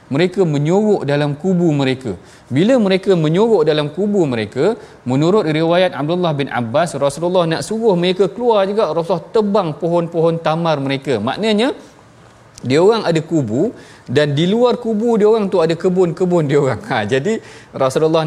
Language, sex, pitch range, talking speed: Malayalam, male, 150-195 Hz, 150 wpm